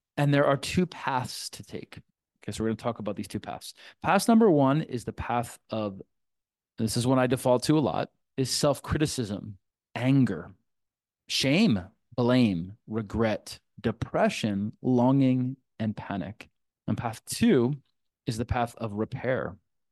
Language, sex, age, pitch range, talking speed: English, male, 30-49, 110-135 Hz, 150 wpm